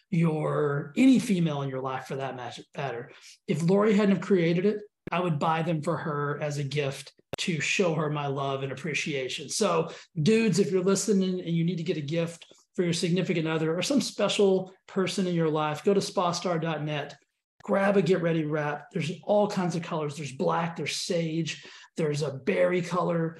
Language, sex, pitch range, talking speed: English, male, 155-205 Hz, 190 wpm